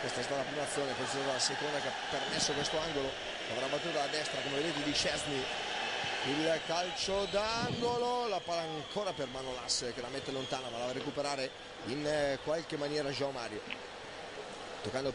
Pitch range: 130-160 Hz